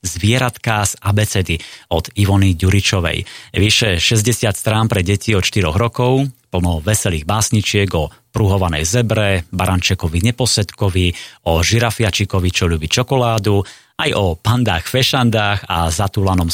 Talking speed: 115 wpm